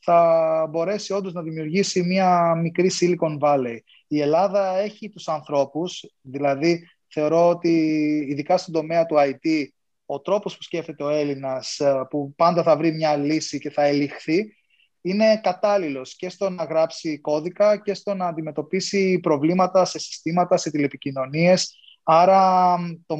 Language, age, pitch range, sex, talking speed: Greek, 20-39, 150-190 Hz, male, 140 wpm